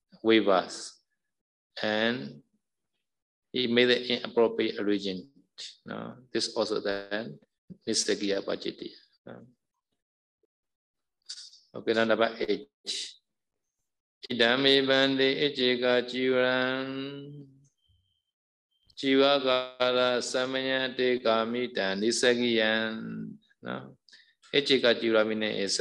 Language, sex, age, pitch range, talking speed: Vietnamese, male, 50-69, 110-130 Hz, 75 wpm